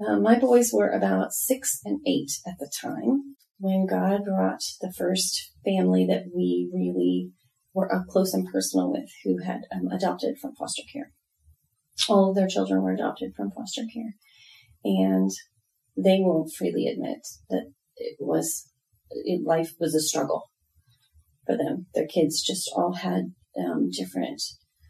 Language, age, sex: English, 30-49, female